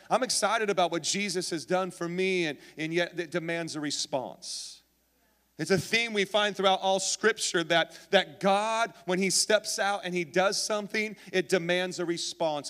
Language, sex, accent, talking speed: English, male, American, 185 wpm